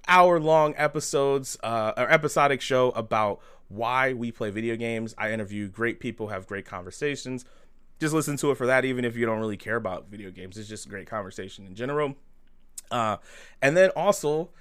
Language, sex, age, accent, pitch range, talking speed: English, male, 20-39, American, 105-135 Hz, 190 wpm